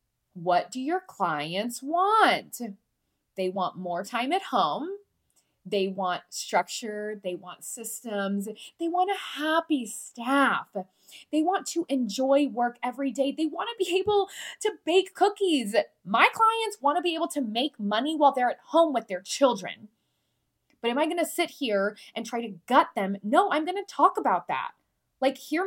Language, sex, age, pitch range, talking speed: English, female, 20-39, 240-360 Hz, 175 wpm